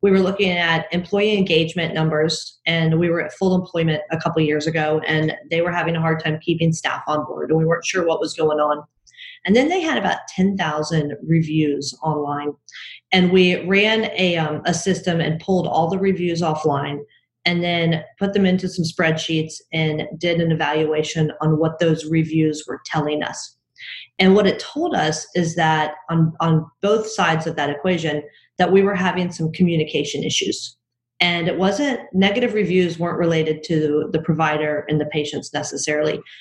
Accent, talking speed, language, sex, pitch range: American, 180 wpm, English, female, 155-180 Hz